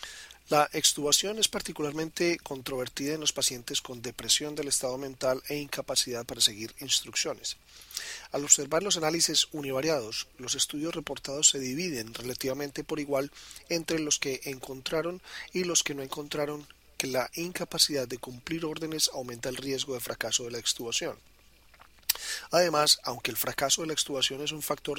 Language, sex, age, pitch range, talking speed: Spanish, male, 40-59, 130-155 Hz, 155 wpm